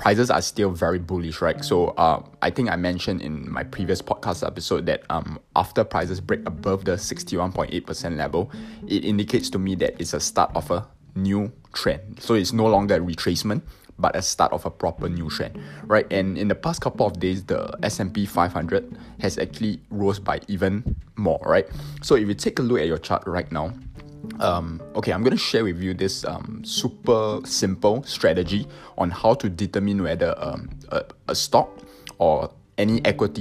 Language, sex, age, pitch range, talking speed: English, male, 20-39, 85-110 Hz, 190 wpm